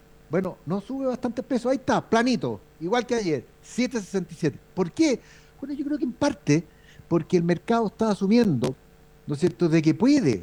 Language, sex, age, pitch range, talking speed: Spanish, male, 50-69, 150-225 Hz, 180 wpm